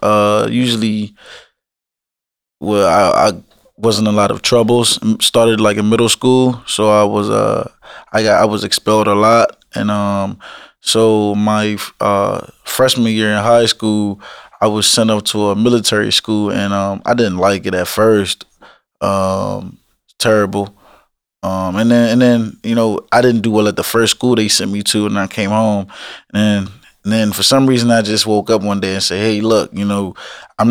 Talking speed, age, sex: 190 wpm, 20-39, male